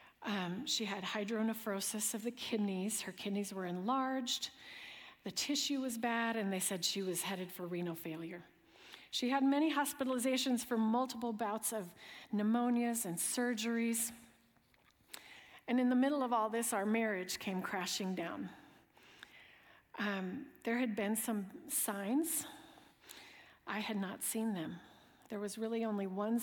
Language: English